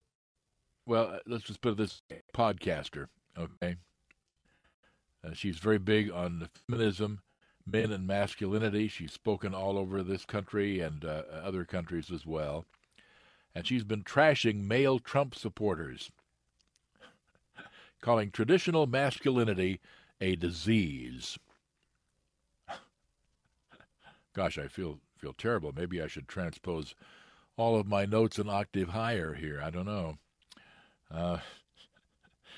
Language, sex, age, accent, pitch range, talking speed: English, male, 60-79, American, 85-110 Hz, 110 wpm